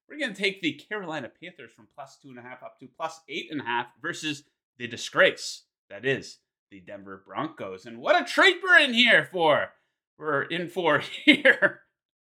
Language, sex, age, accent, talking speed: English, male, 30-49, American, 195 wpm